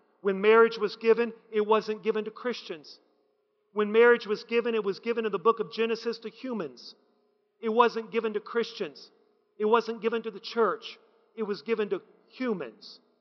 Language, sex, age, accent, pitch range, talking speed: English, male, 40-59, American, 205-240 Hz, 175 wpm